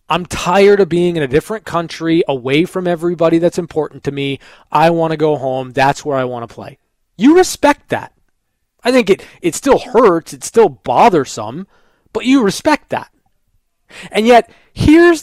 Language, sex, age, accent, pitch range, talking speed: English, male, 20-39, American, 155-220 Hz, 175 wpm